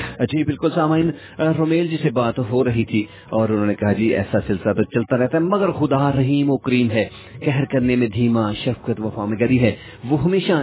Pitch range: 100-135 Hz